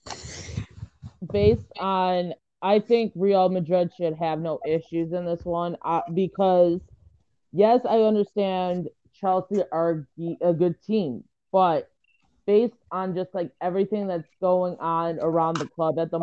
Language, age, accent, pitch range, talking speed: English, 20-39, American, 155-185 Hz, 135 wpm